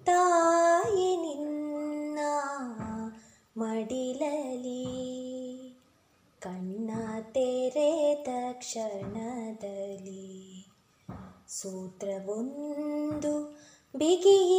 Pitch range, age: 270-390 Hz, 20-39